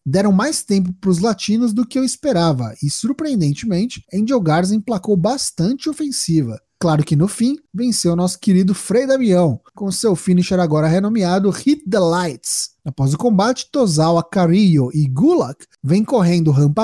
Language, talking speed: Portuguese, 155 wpm